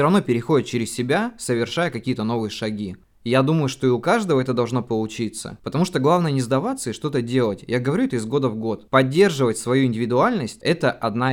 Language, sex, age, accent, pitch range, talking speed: Russian, male, 20-39, native, 110-130 Hz, 205 wpm